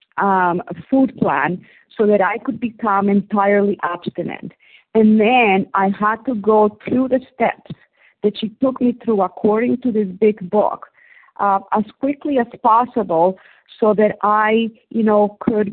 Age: 40-59